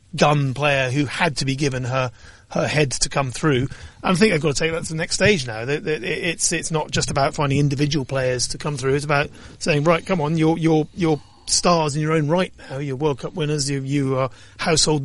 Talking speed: 235 wpm